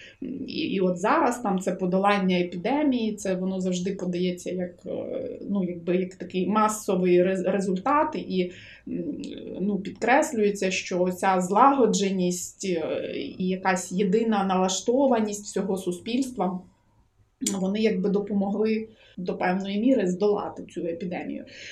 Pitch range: 185-240 Hz